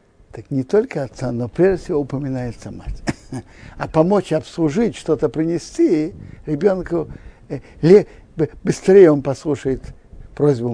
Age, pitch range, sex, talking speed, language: 60-79, 115-150 Hz, male, 110 wpm, Russian